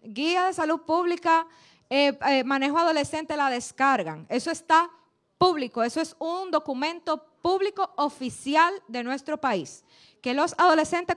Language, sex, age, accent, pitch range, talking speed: Spanish, female, 20-39, American, 250-325 Hz, 135 wpm